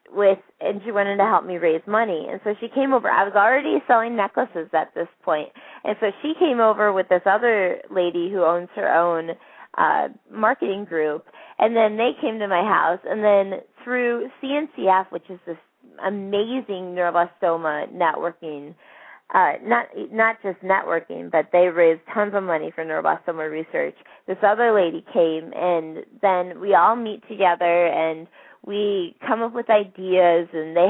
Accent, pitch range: American, 170-225 Hz